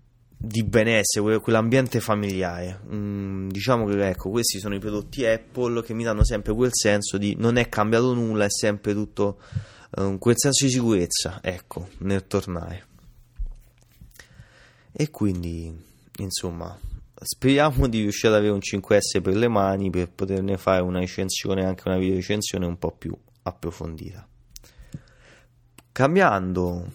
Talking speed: 140 wpm